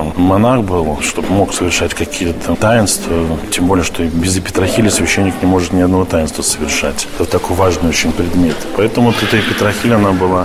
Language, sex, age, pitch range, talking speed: Russian, male, 20-39, 85-100 Hz, 185 wpm